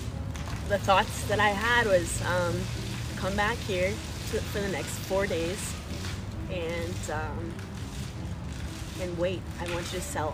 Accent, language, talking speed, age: American, English, 145 wpm, 20-39